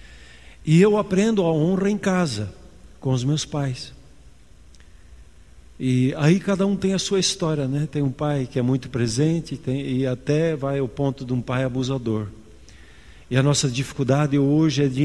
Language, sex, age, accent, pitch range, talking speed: Portuguese, male, 50-69, Brazilian, 120-160 Hz, 175 wpm